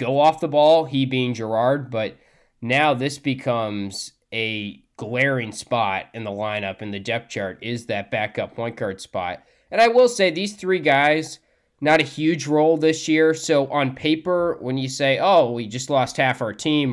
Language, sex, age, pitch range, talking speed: English, male, 20-39, 120-155 Hz, 190 wpm